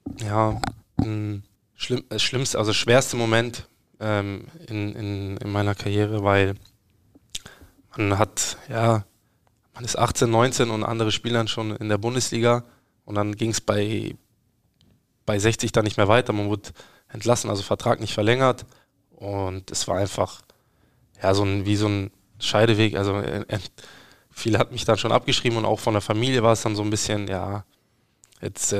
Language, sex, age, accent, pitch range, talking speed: German, male, 20-39, German, 105-115 Hz, 165 wpm